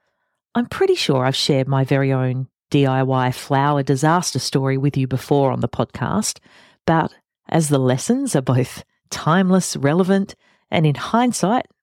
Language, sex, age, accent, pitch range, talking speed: English, female, 40-59, Australian, 140-205 Hz, 145 wpm